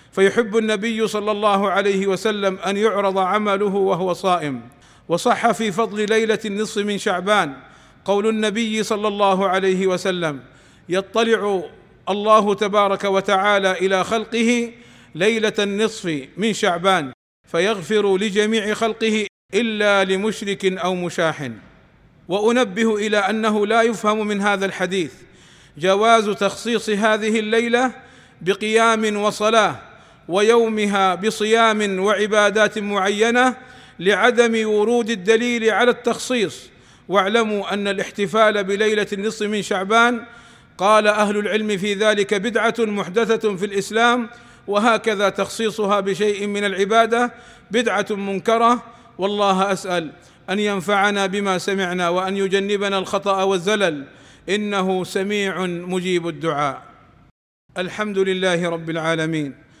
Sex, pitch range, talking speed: male, 190-220 Hz, 105 wpm